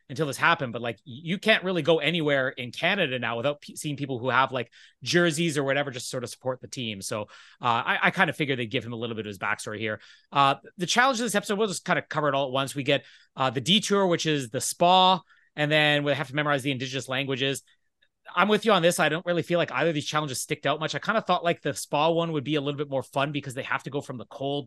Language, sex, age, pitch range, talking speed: English, male, 30-49, 130-170 Hz, 285 wpm